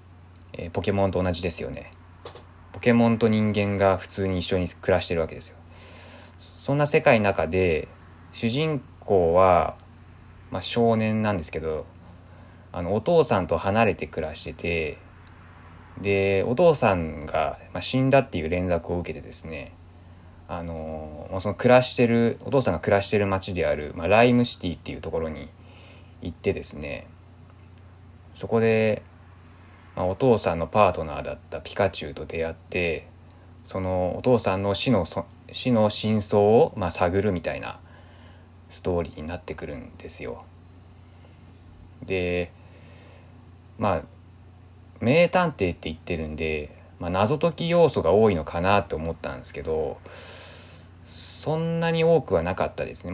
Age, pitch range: 20-39, 85-105 Hz